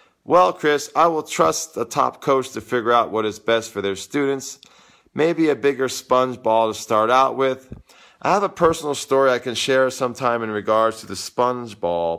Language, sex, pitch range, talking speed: English, male, 110-140 Hz, 200 wpm